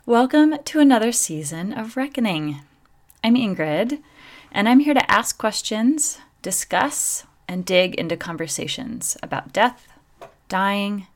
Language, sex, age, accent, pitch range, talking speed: English, female, 30-49, American, 155-200 Hz, 120 wpm